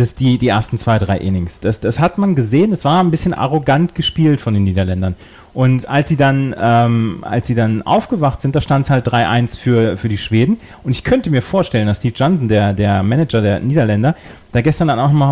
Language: German